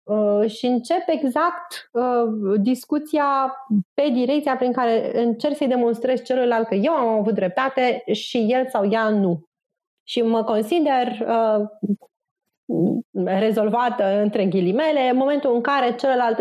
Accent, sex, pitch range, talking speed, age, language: native, female, 195-245 Hz, 130 wpm, 30-49, Romanian